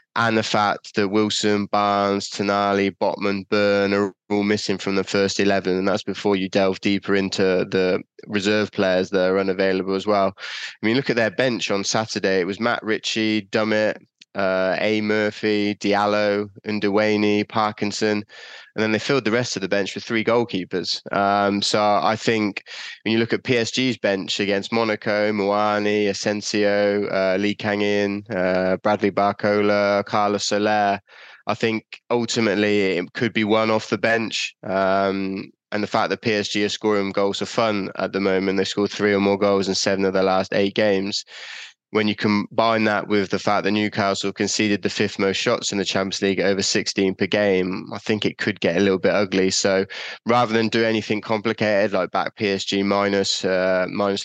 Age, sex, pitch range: 20-39, male, 95-105 Hz